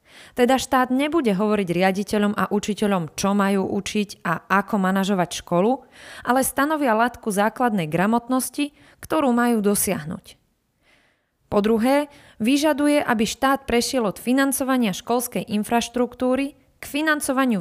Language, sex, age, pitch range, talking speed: Slovak, female, 20-39, 195-255 Hz, 115 wpm